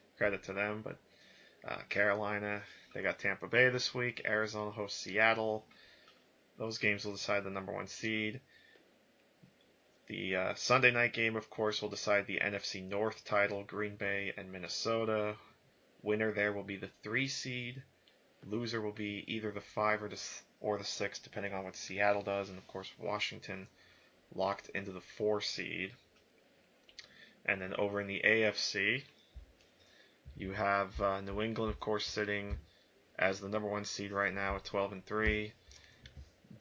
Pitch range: 100-110 Hz